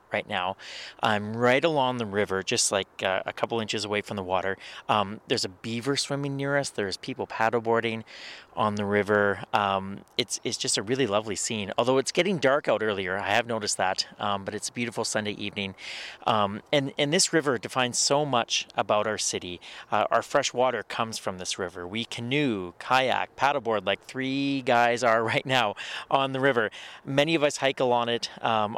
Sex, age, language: male, 30-49, English